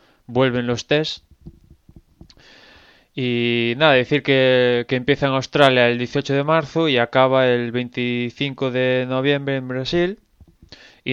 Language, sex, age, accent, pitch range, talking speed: Spanish, male, 20-39, Spanish, 120-145 Hz, 130 wpm